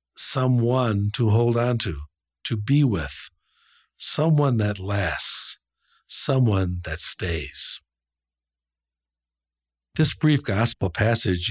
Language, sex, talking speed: English, male, 95 wpm